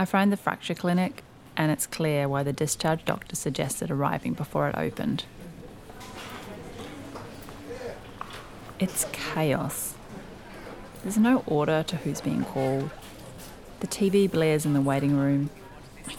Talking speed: 125 wpm